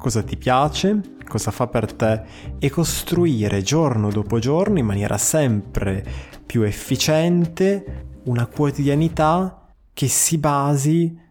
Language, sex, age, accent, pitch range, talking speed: Italian, male, 20-39, native, 110-150 Hz, 115 wpm